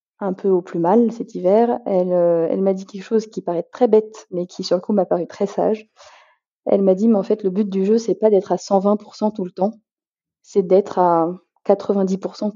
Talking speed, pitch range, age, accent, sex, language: 235 wpm, 180-205 Hz, 20-39, French, female, French